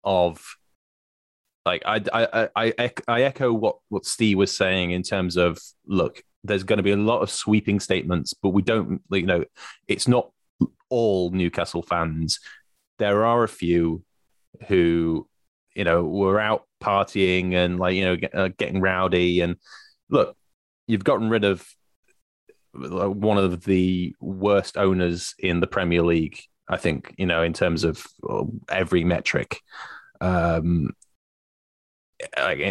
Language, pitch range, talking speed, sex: English, 85-100 Hz, 140 wpm, male